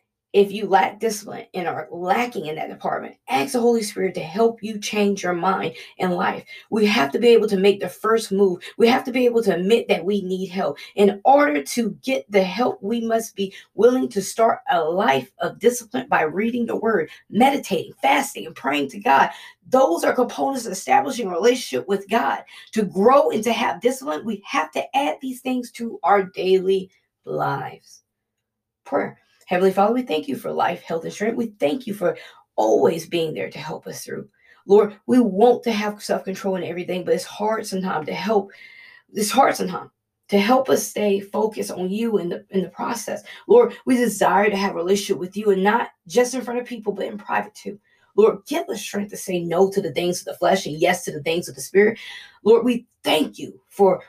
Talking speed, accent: 210 wpm, American